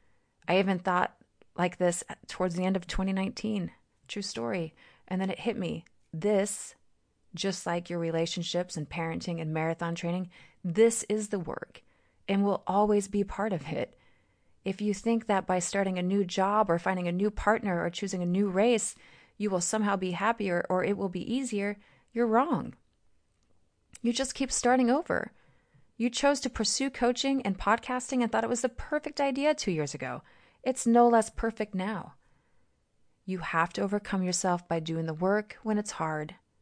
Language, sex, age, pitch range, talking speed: English, female, 30-49, 175-220 Hz, 175 wpm